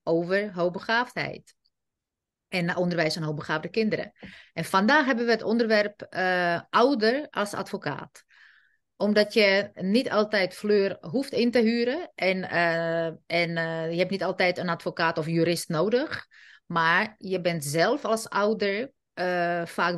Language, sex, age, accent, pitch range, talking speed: Dutch, female, 30-49, Dutch, 170-220 Hz, 140 wpm